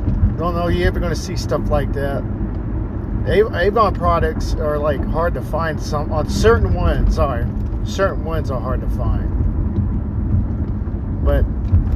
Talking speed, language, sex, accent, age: 145 wpm, English, male, American, 40-59